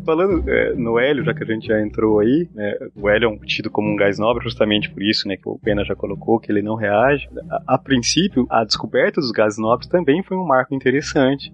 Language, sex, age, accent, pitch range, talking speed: Portuguese, male, 20-39, Brazilian, 105-150 Hz, 245 wpm